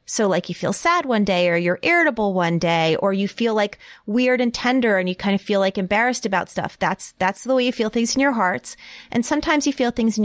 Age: 30-49